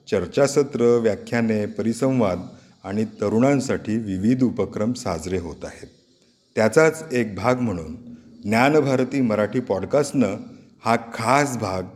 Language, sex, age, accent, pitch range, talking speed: Marathi, male, 50-69, native, 100-130 Hz, 105 wpm